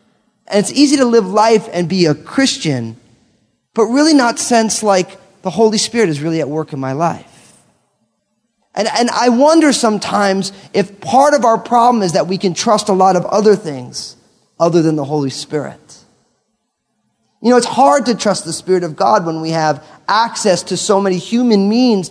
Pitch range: 150-230 Hz